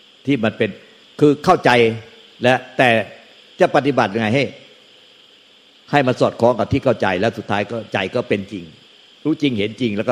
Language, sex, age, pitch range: Thai, male, 60-79, 105-130 Hz